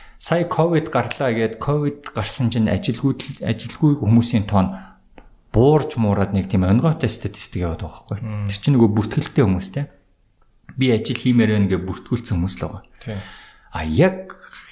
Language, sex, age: Korean, male, 50-69